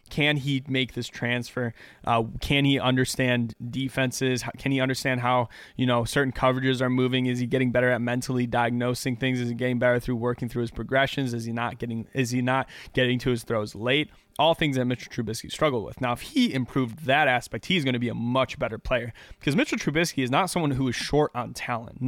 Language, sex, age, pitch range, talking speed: English, male, 20-39, 120-140 Hz, 225 wpm